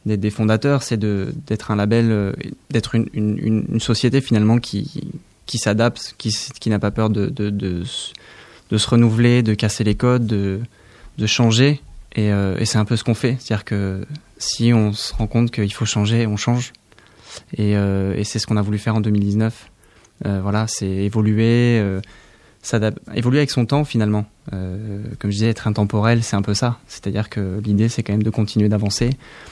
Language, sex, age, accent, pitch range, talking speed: French, male, 20-39, French, 105-115 Hz, 200 wpm